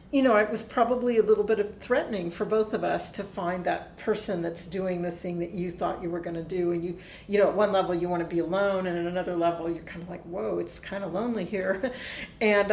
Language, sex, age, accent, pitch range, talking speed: English, female, 50-69, American, 180-220 Hz, 250 wpm